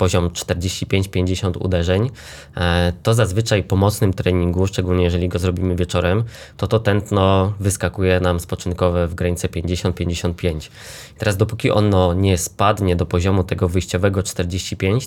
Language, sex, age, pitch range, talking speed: Polish, male, 20-39, 90-105 Hz, 125 wpm